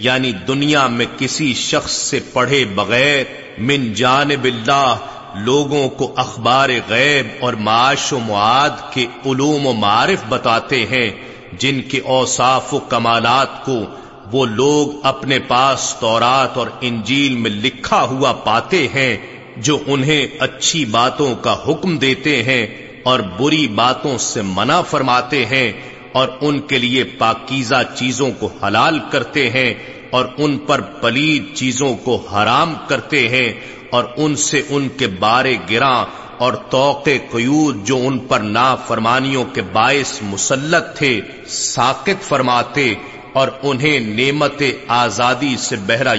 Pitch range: 120-140 Hz